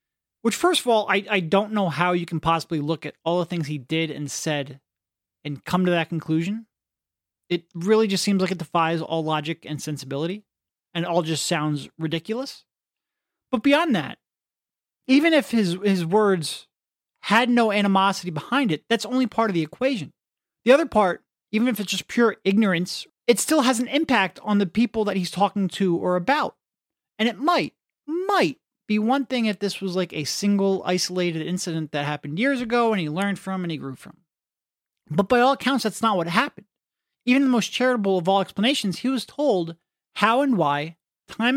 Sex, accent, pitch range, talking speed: male, American, 165-230 Hz, 195 wpm